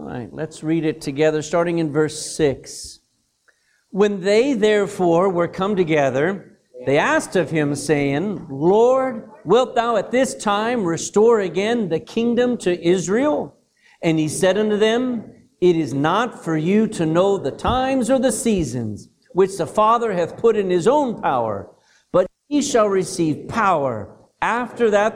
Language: English